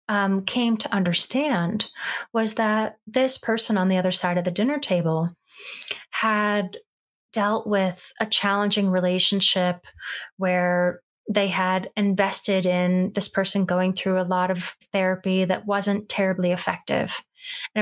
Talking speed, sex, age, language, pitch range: 135 wpm, female, 30-49, English, 185-210 Hz